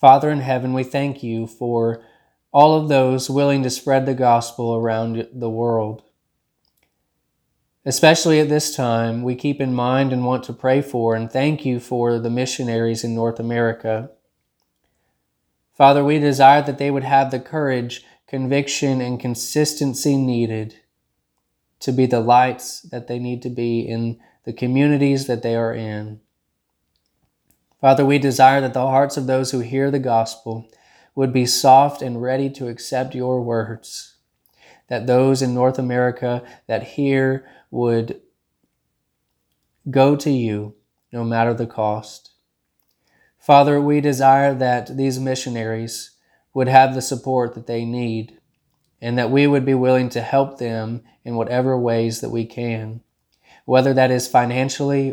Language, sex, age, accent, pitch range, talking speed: English, male, 20-39, American, 115-135 Hz, 150 wpm